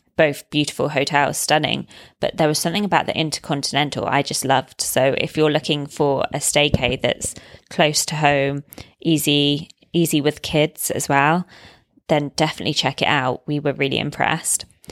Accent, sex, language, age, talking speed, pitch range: British, female, English, 20-39, 160 wpm, 145-175 Hz